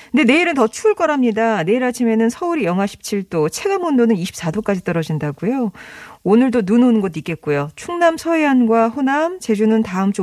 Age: 40-59